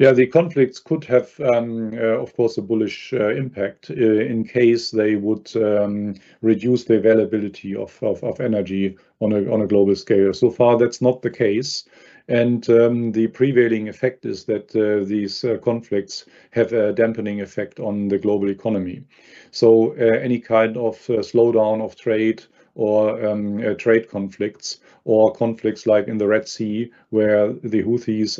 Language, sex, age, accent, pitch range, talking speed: English, male, 40-59, German, 105-115 Hz, 165 wpm